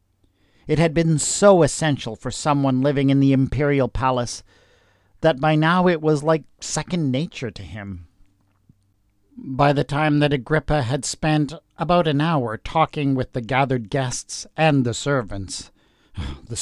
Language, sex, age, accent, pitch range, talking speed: English, male, 50-69, American, 115-160 Hz, 150 wpm